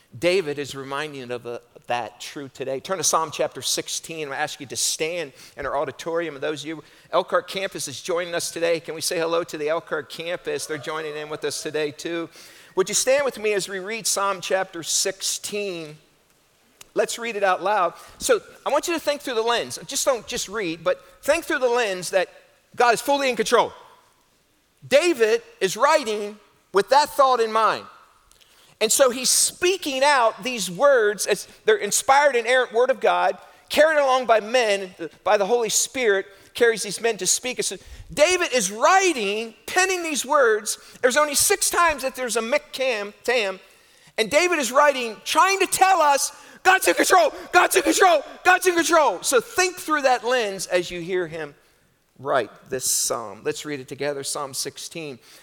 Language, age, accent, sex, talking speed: English, 50-69, American, male, 190 wpm